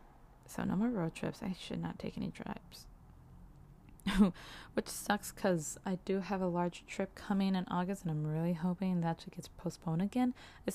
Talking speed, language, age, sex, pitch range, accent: 185 wpm, English, 20-39, female, 170-210 Hz, American